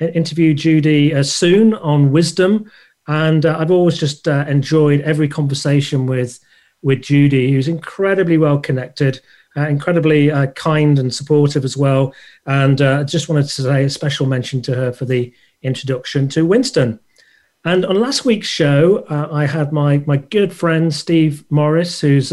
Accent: British